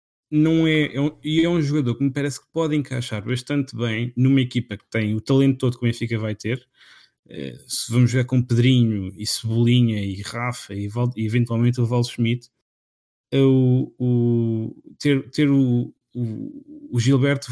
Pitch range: 120-135 Hz